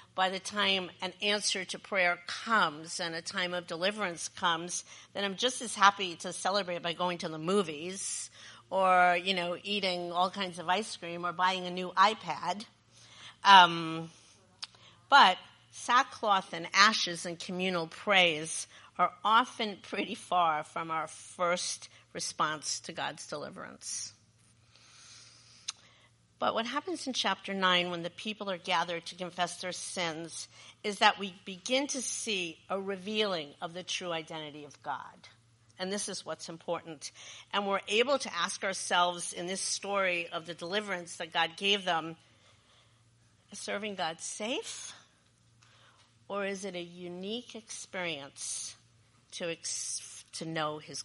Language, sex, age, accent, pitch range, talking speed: English, female, 50-69, American, 150-195 Hz, 145 wpm